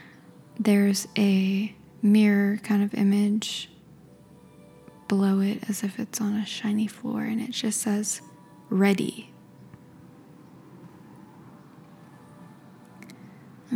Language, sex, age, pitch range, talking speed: English, female, 10-29, 195-230 Hz, 90 wpm